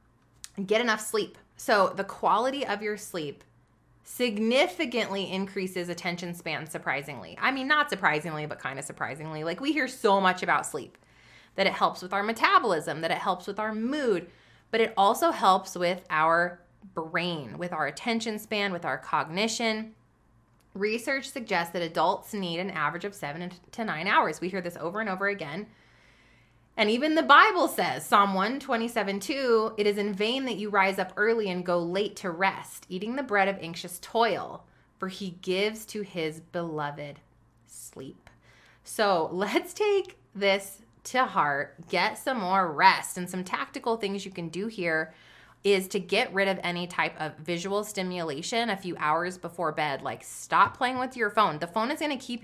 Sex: female